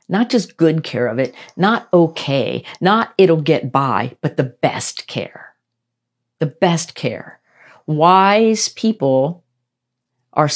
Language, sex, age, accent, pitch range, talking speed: English, female, 50-69, American, 130-160 Hz, 125 wpm